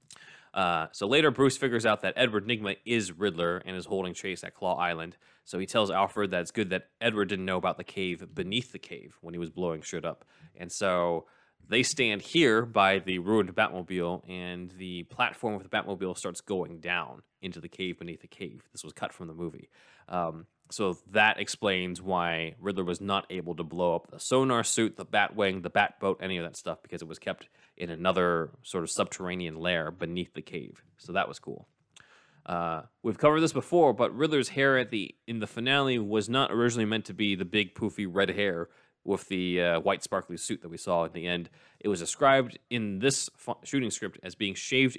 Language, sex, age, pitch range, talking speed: English, male, 20-39, 90-115 Hz, 215 wpm